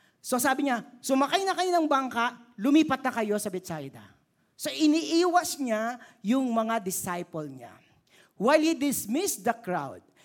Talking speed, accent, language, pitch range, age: 145 wpm, native, Filipino, 155-245 Hz, 50-69